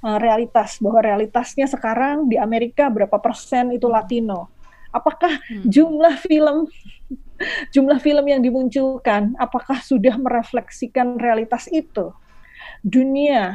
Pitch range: 220-260 Hz